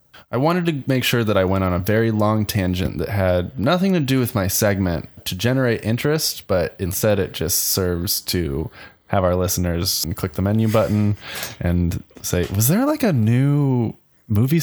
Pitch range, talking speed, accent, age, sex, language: 90-115 Hz, 185 wpm, American, 20-39, male, English